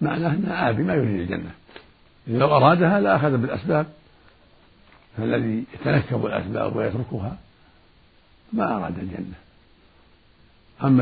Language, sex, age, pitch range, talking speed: Arabic, male, 60-79, 105-135 Hz, 100 wpm